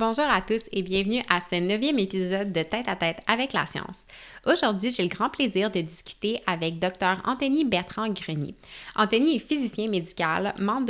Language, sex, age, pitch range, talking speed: French, female, 20-39, 180-235 Hz, 195 wpm